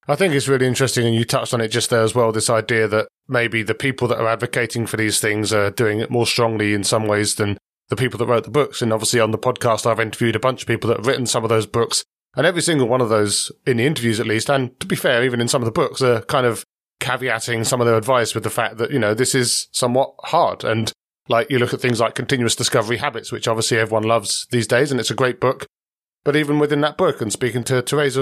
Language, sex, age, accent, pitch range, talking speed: English, male, 30-49, British, 115-130 Hz, 270 wpm